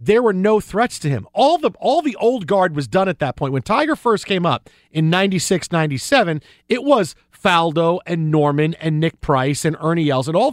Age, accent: 40-59, American